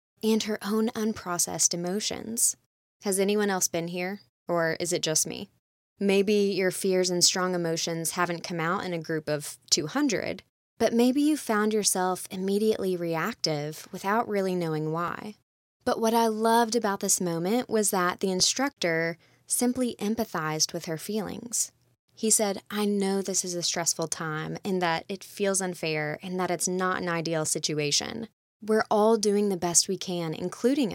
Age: 20-39